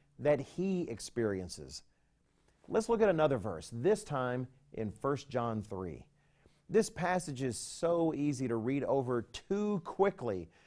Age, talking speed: 40-59, 135 wpm